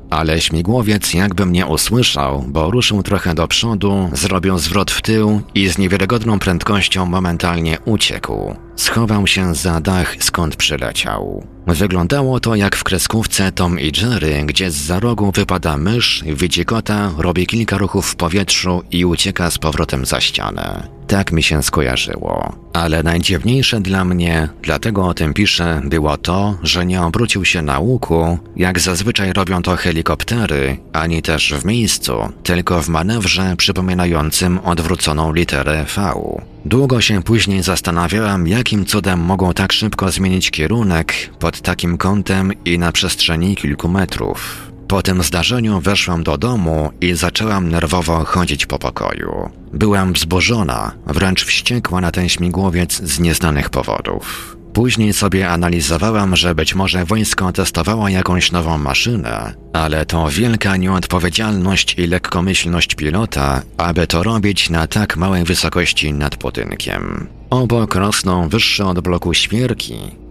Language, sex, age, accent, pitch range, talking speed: Polish, male, 40-59, native, 85-100 Hz, 140 wpm